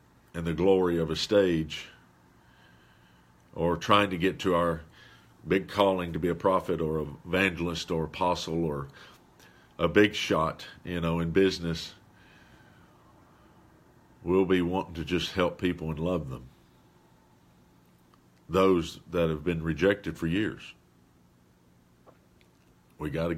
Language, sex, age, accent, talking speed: English, male, 50-69, American, 130 wpm